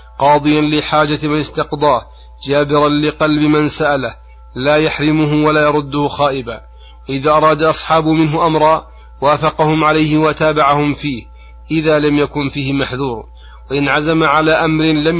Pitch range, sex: 140-150 Hz, male